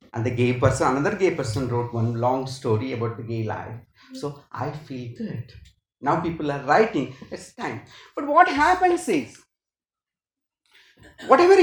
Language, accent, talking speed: Tamil, native, 155 wpm